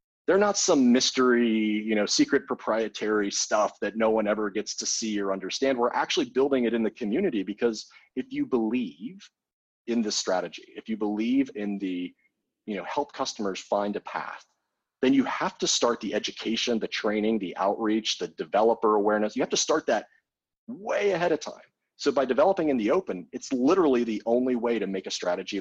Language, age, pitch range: English, 30-49, 95-120 Hz